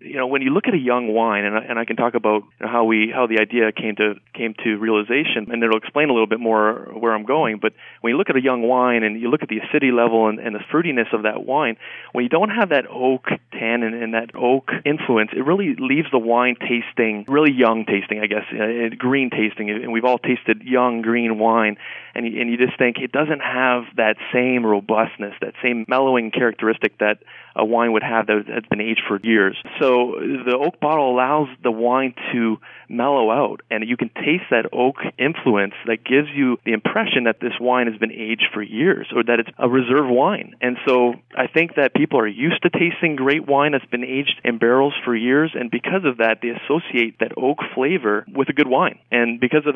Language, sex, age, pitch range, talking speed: English, male, 30-49, 110-130 Hz, 220 wpm